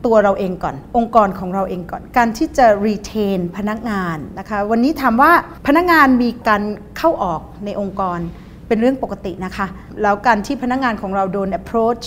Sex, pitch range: female, 195-245 Hz